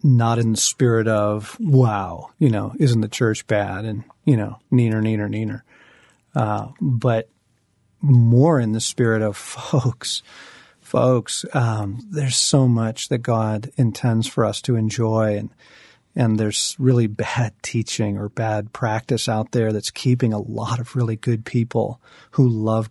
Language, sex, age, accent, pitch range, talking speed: English, male, 40-59, American, 110-130 Hz, 155 wpm